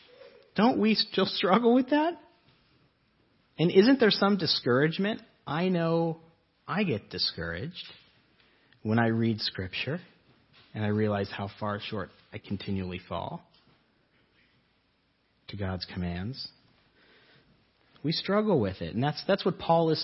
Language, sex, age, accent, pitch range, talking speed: English, male, 40-59, American, 105-165 Hz, 125 wpm